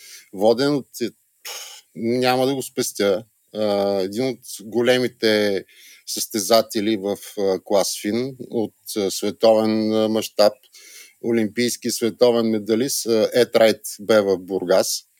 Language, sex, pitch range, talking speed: Bulgarian, male, 105-125 Hz, 90 wpm